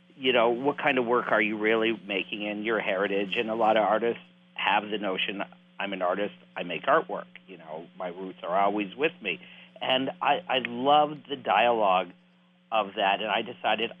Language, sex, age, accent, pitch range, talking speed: English, male, 50-69, American, 90-120 Hz, 195 wpm